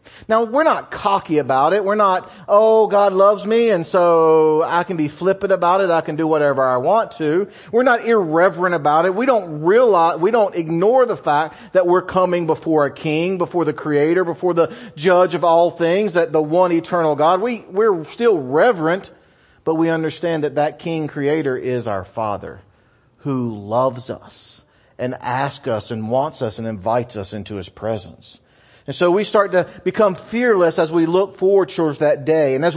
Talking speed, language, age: 190 wpm, English, 40-59